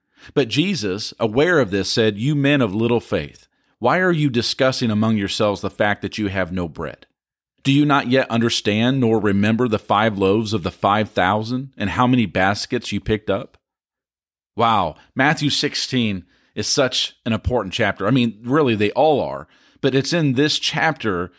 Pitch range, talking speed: 105-135 Hz, 180 wpm